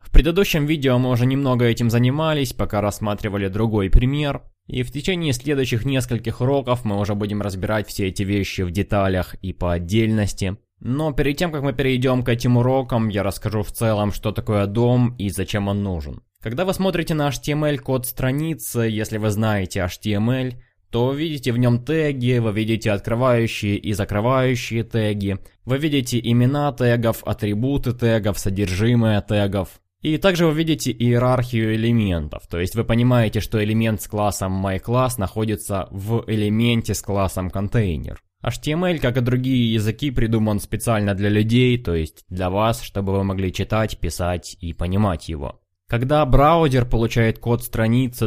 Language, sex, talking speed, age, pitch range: Russian, male, 160 wpm, 20-39, 100-125 Hz